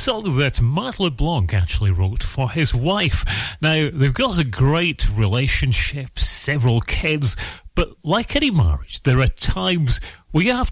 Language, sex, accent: English, male, British